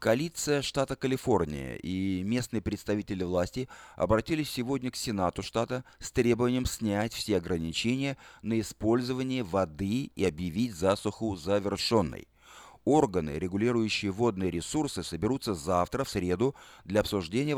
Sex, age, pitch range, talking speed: male, 30-49, 90-125 Hz, 115 wpm